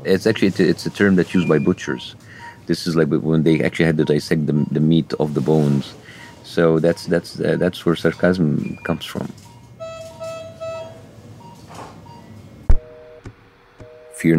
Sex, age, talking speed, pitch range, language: male, 50-69, 140 wpm, 80-110 Hz, English